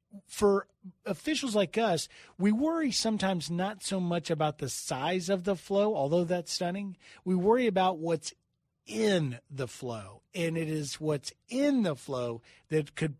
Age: 40-59